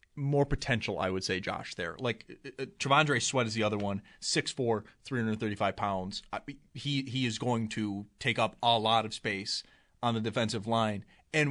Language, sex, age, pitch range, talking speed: English, male, 30-49, 110-130 Hz, 175 wpm